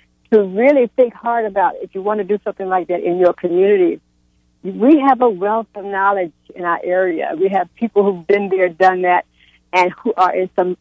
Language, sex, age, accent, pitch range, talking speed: English, female, 60-79, American, 180-225 Hz, 210 wpm